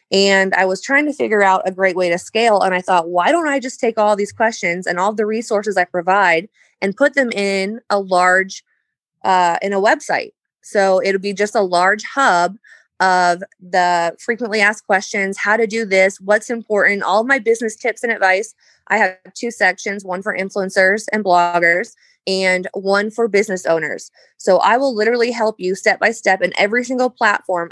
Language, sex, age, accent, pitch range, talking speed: English, female, 20-39, American, 180-220 Hz, 190 wpm